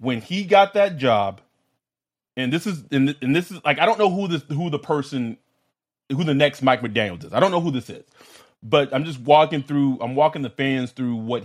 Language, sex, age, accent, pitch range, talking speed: English, male, 30-49, American, 130-170 Hz, 225 wpm